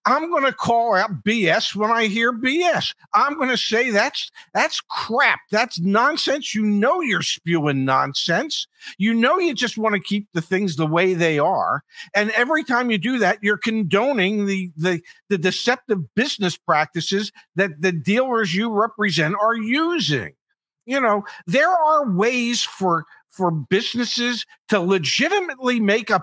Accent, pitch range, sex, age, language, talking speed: American, 185-250 Hz, male, 50-69, English, 160 wpm